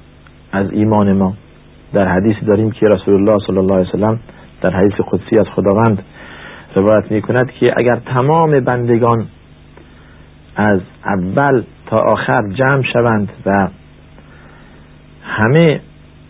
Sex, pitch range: male, 80-120 Hz